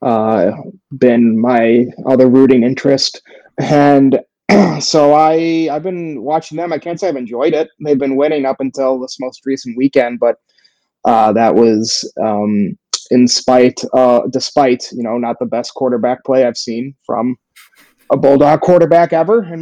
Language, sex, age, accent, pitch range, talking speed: English, male, 30-49, American, 120-150 Hz, 160 wpm